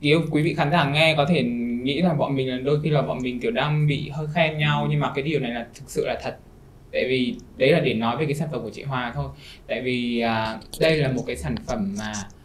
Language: Vietnamese